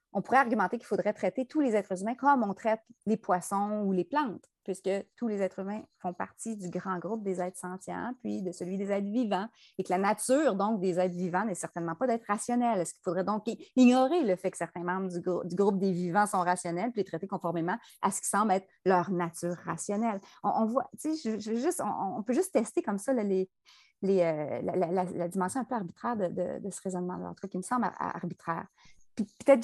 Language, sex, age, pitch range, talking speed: French, female, 30-49, 185-230 Hz, 240 wpm